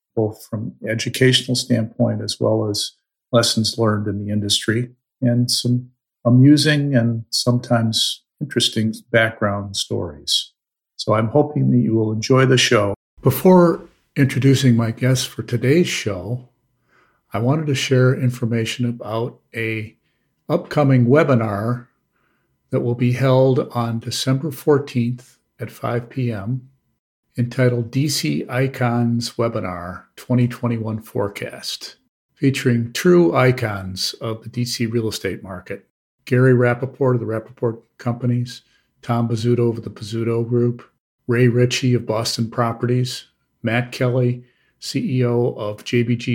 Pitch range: 115-125 Hz